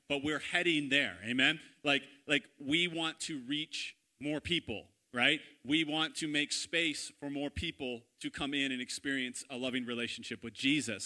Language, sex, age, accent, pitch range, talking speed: English, male, 30-49, American, 130-170 Hz, 175 wpm